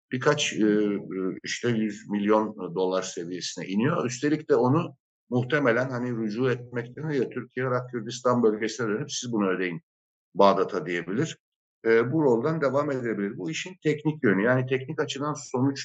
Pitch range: 105-135 Hz